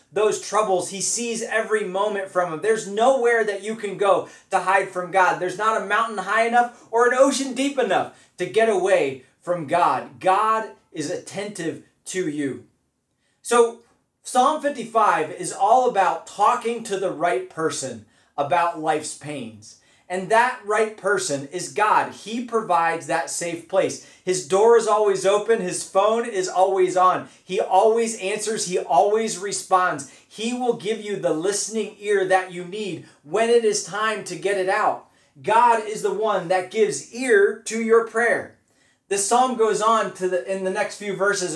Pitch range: 180-225 Hz